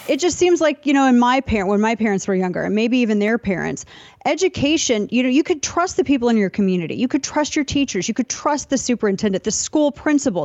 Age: 30-49